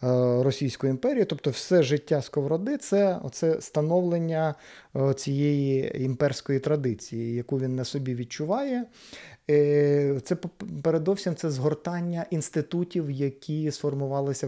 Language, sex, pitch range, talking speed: Ukrainian, male, 130-155 Hz, 105 wpm